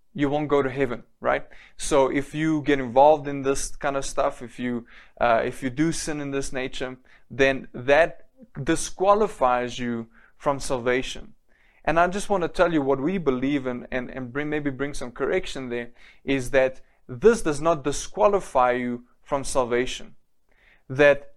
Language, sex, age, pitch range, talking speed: English, male, 20-39, 130-155 Hz, 170 wpm